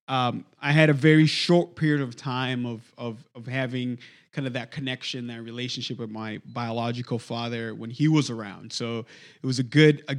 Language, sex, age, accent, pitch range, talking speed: English, male, 20-39, American, 125-160 Hz, 195 wpm